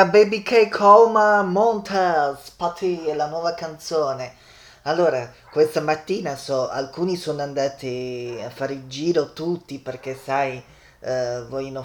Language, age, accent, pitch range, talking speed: Italian, 20-39, native, 125-160 Hz, 125 wpm